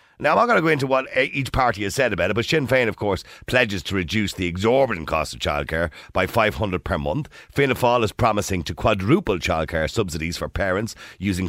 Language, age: English, 50-69